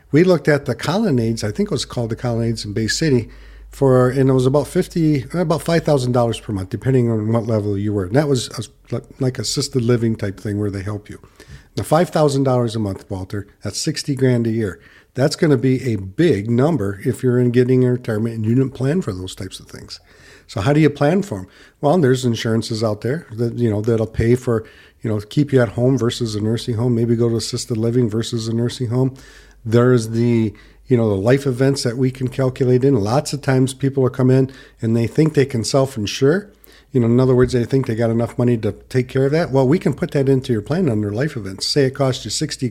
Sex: male